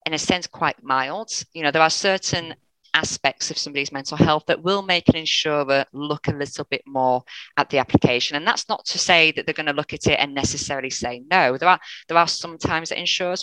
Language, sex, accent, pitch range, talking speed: English, female, British, 140-185 Hz, 230 wpm